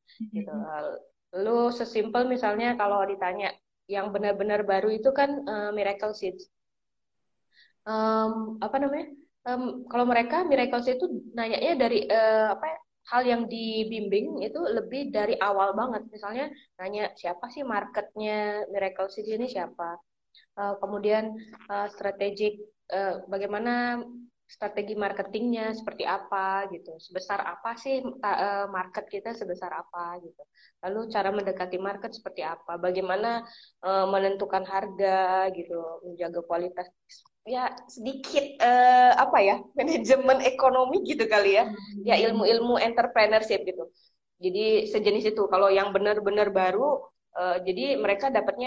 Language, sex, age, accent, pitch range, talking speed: Indonesian, female, 20-39, native, 195-240 Hz, 125 wpm